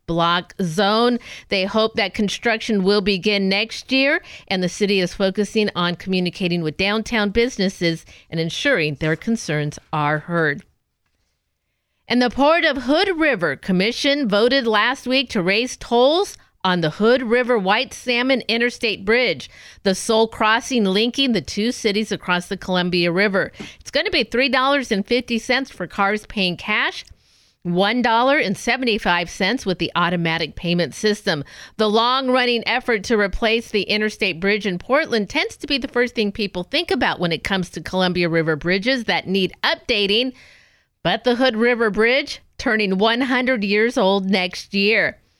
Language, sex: English, female